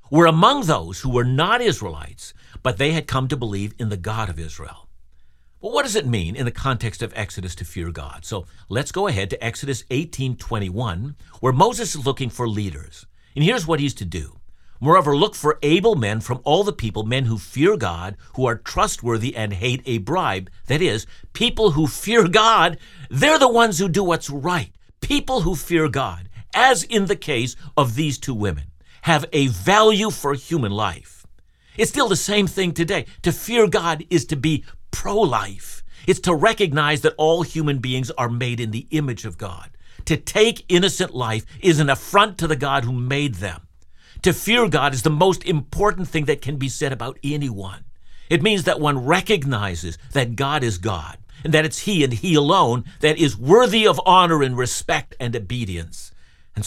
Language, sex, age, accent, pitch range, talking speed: English, male, 50-69, American, 110-165 Hz, 195 wpm